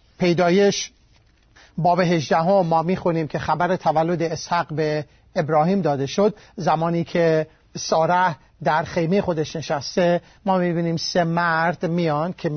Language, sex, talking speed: Persian, male, 130 wpm